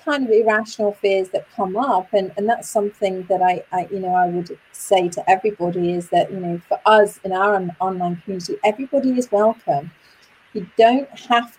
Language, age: English, 30-49